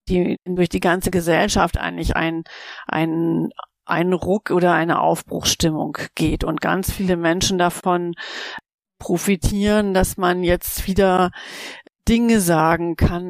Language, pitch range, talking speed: German, 175-190 Hz, 120 wpm